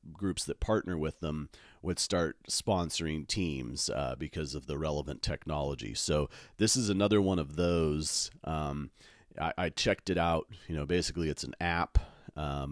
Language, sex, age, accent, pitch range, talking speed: English, male, 40-59, American, 80-95 Hz, 165 wpm